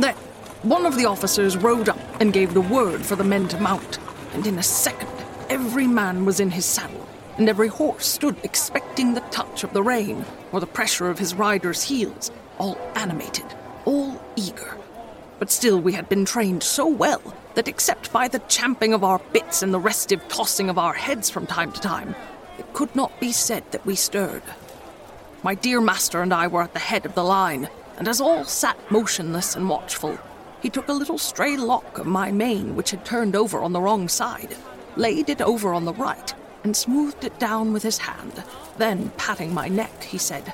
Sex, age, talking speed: female, 30-49, 205 wpm